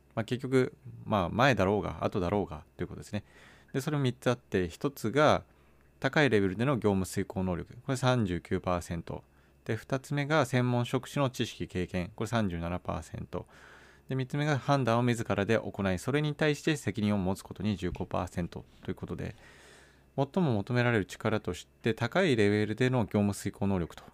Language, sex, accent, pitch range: Japanese, male, native, 90-130 Hz